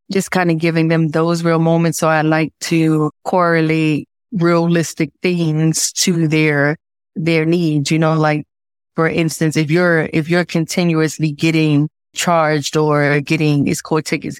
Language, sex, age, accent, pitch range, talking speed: English, female, 20-39, American, 155-175 Hz, 150 wpm